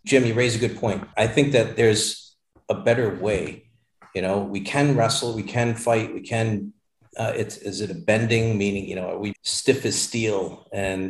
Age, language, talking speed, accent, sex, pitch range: 40-59, English, 205 wpm, American, male, 100-140 Hz